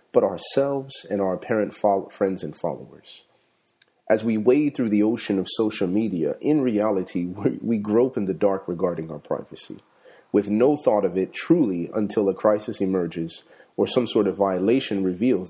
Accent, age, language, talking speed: American, 40-59, English, 165 wpm